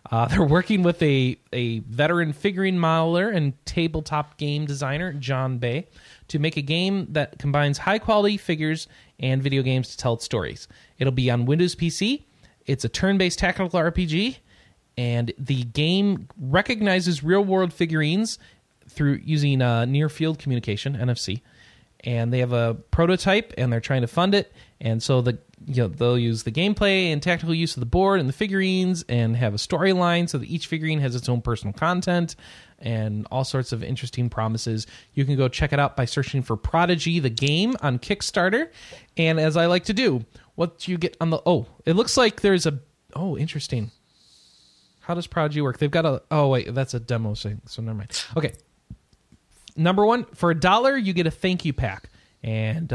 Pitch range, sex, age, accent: 120-175 Hz, male, 30-49, American